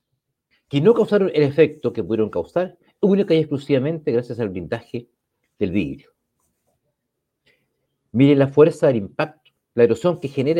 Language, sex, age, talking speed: Spanish, male, 50-69, 140 wpm